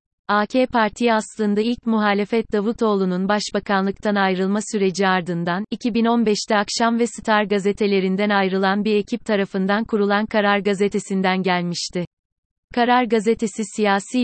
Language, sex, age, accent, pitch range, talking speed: Turkish, female, 30-49, native, 195-225 Hz, 110 wpm